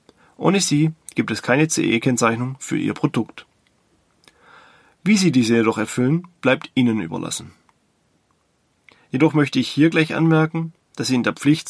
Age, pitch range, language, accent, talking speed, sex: 30-49, 120-155 Hz, German, German, 145 wpm, male